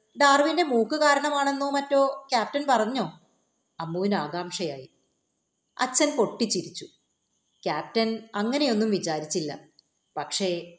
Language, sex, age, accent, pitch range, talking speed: Malayalam, female, 30-49, native, 170-235 Hz, 80 wpm